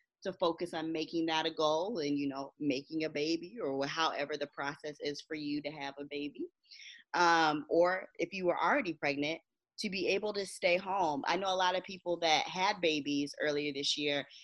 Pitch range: 150-190 Hz